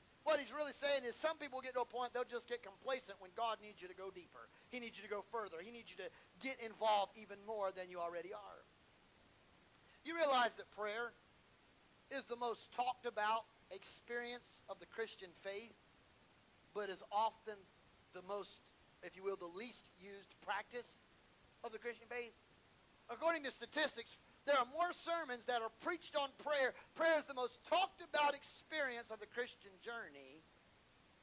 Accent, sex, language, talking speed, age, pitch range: American, male, English, 180 wpm, 40-59, 190-245 Hz